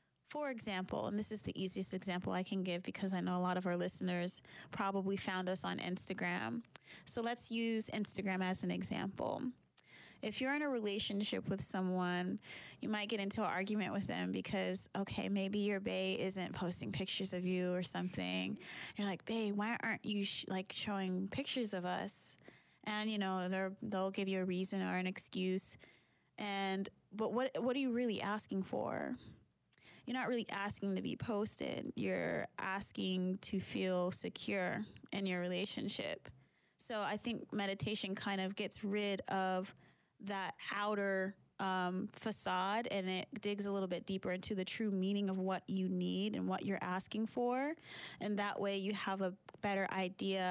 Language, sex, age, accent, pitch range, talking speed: English, female, 20-39, American, 185-210 Hz, 175 wpm